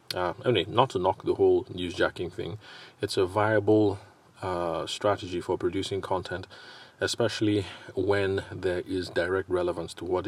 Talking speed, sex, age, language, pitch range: 140 wpm, male, 30-49, English, 90-120 Hz